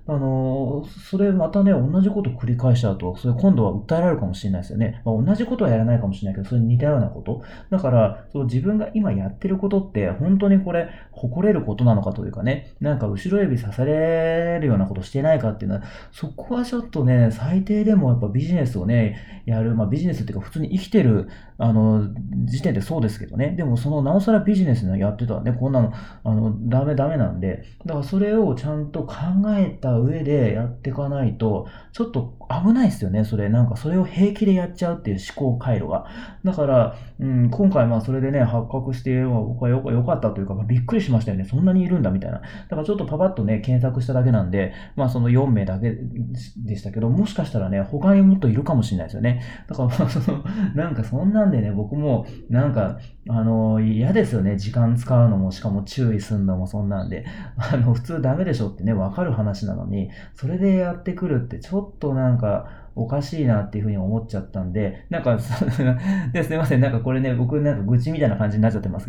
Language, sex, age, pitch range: Japanese, male, 40-59, 110-160 Hz